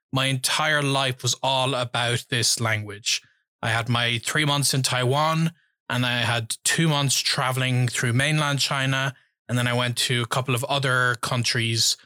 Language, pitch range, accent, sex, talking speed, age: English, 125-145 Hz, Irish, male, 170 wpm, 20-39